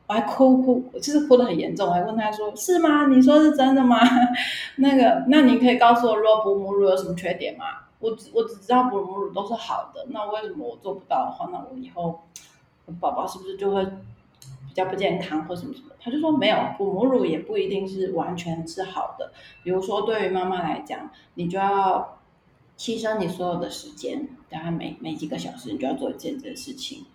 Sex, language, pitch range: female, Chinese, 175-250 Hz